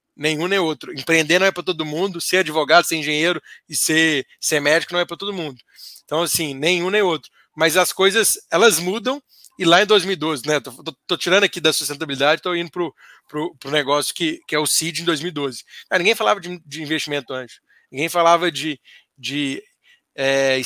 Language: Portuguese